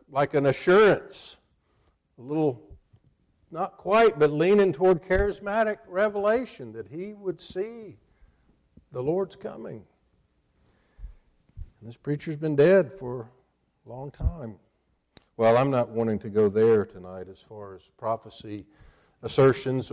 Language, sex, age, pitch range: English, male, 50-69, 105-150 Hz